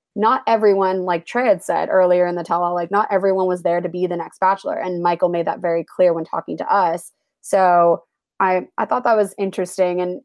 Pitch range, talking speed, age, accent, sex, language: 175-230 Hz, 220 wpm, 20-39, American, female, English